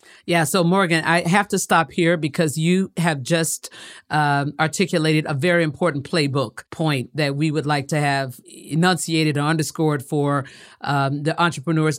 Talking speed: 160 wpm